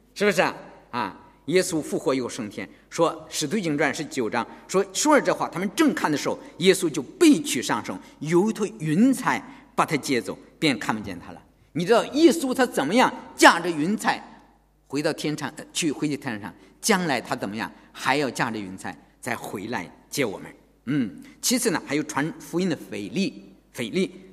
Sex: male